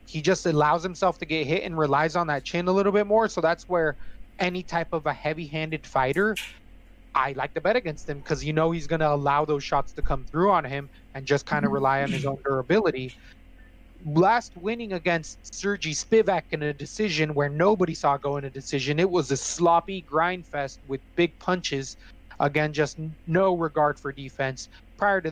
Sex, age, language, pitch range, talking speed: male, 30-49, English, 140-175 Hz, 205 wpm